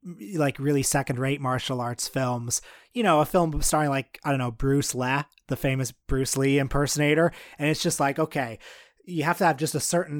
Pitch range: 130-155 Hz